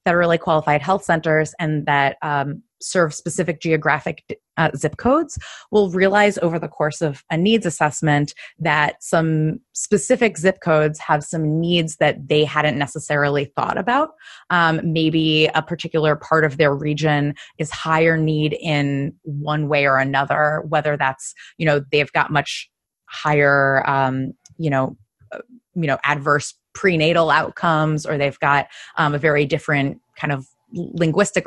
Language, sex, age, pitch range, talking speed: English, female, 20-39, 150-175 Hz, 155 wpm